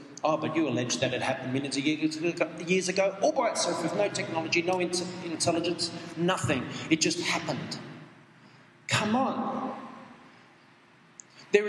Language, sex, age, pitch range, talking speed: English, male, 40-59, 145-205 Hz, 140 wpm